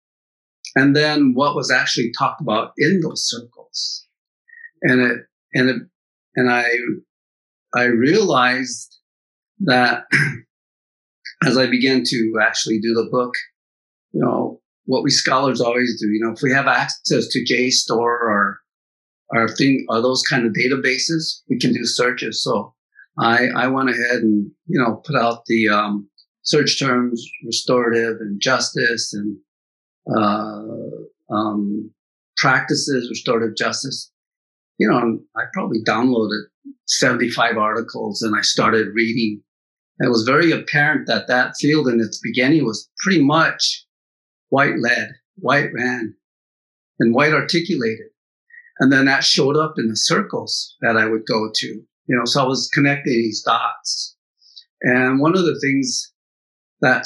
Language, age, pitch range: English, 50-69, 110-140 Hz